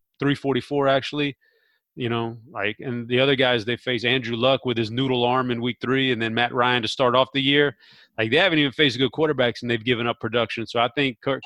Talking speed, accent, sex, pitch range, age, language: 235 wpm, American, male, 115-140 Hz, 30-49, English